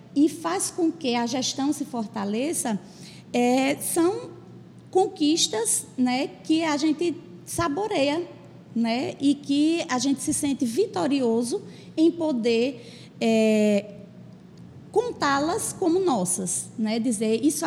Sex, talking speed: female, 105 wpm